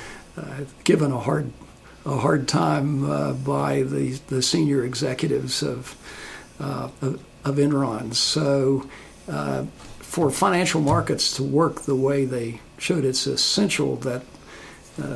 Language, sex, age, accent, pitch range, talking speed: English, male, 60-79, American, 130-165 Hz, 130 wpm